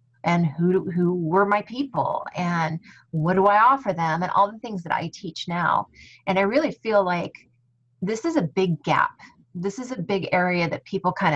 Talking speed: 200 wpm